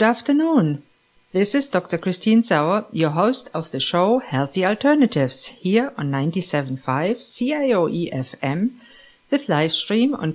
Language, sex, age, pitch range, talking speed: English, female, 50-69, 150-230 Hz, 135 wpm